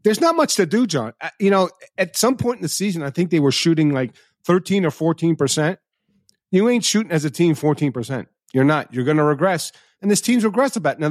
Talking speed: 230 wpm